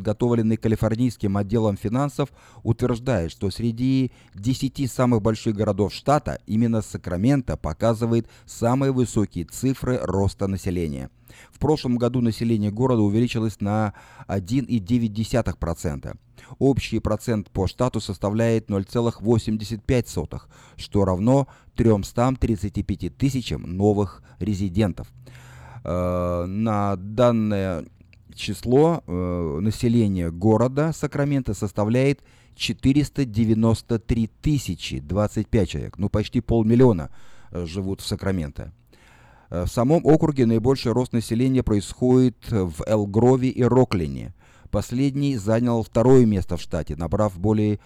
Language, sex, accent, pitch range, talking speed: Russian, male, native, 100-125 Hz, 100 wpm